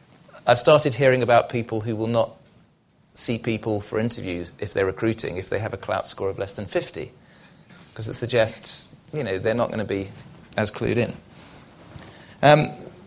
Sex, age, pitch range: male, 30-49, 105-135 Hz